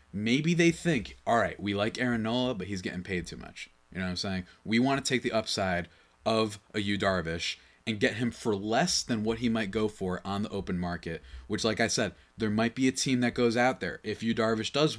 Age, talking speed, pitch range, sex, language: 20-39, 250 wpm, 95-135 Hz, male, English